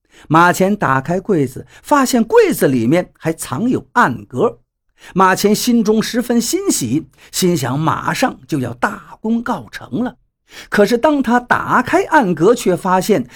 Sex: male